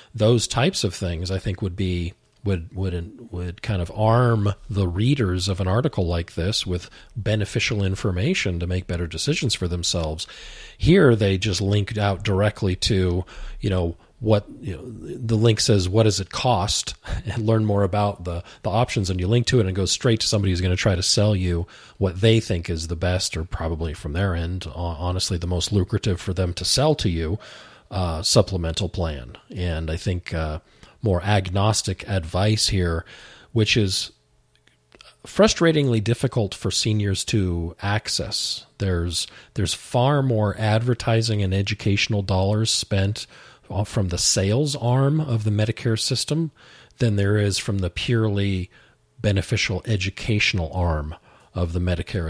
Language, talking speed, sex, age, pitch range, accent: English, 165 wpm, male, 40-59, 90-110 Hz, American